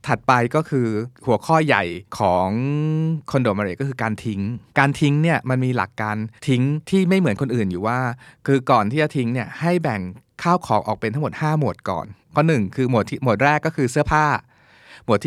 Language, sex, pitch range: Thai, male, 115-155 Hz